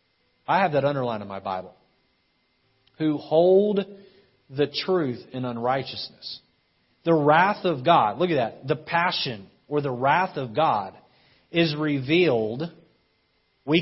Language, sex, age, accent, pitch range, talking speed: English, male, 40-59, American, 145-185 Hz, 130 wpm